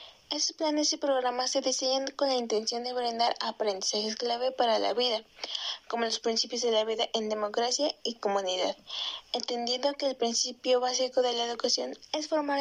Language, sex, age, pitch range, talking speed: Spanish, female, 20-39, 230-275 Hz, 170 wpm